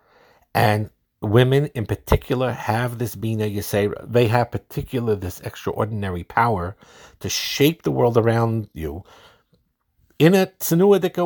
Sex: male